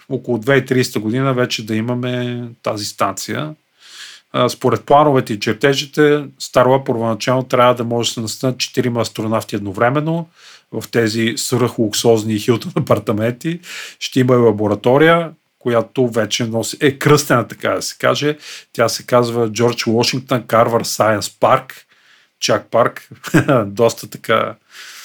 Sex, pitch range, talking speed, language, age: male, 110-135 Hz, 125 wpm, Bulgarian, 40-59